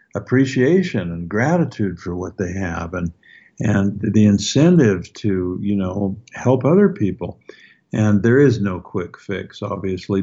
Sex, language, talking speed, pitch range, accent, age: male, English, 140 wpm, 90-105 Hz, American, 60-79